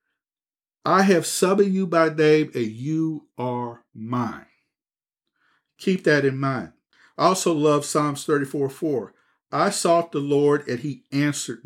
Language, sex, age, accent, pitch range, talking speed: English, male, 50-69, American, 120-155 Hz, 135 wpm